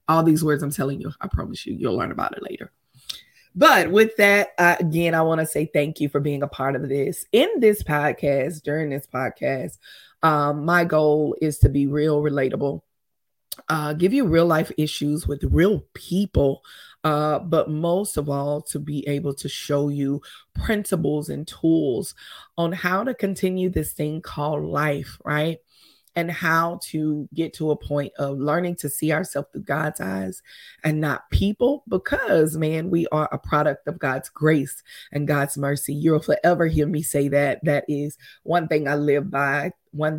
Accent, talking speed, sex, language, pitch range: American, 180 wpm, female, English, 145-160 Hz